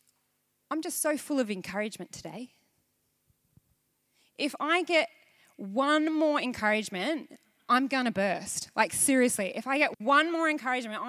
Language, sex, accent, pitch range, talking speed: English, female, Australian, 280-380 Hz, 135 wpm